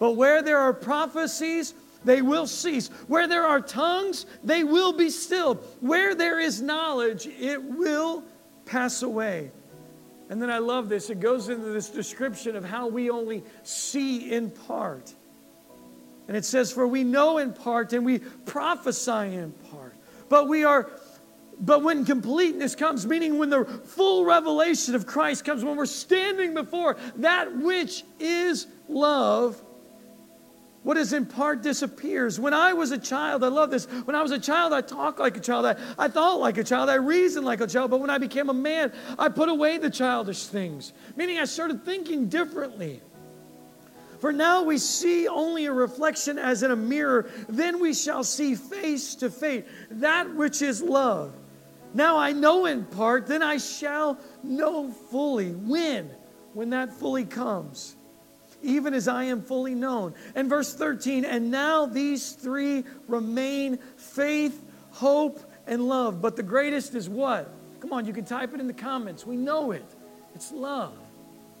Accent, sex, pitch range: American, male, 245-305 Hz